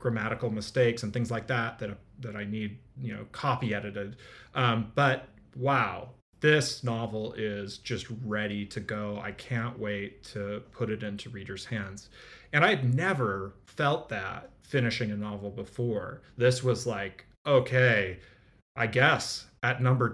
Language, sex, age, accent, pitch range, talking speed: English, male, 30-49, American, 105-125 Hz, 150 wpm